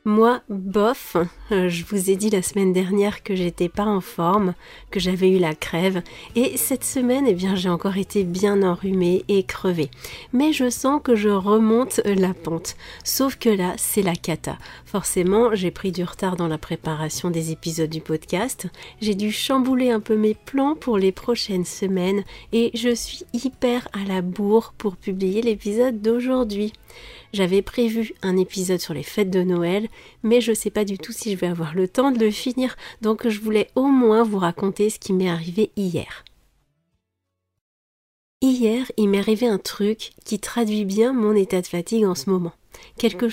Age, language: 40-59, French